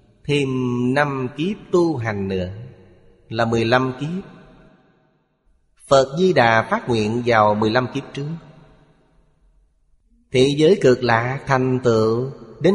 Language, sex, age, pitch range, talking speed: Vietnamese, male, 30-49, 105-130 Hz, 125 wpm